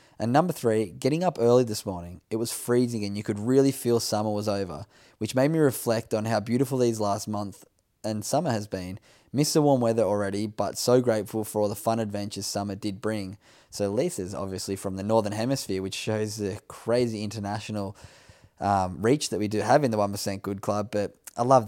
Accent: Australian